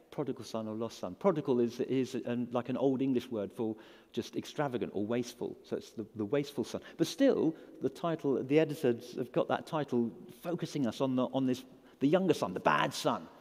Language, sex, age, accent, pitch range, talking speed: English, male, 50-69, British, 125-190 Hz, 210 wpm